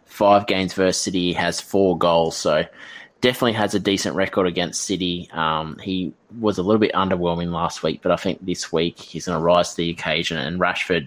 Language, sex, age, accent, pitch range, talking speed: English, male, 20-39, Australian, 80-95 Hz, 210 wpm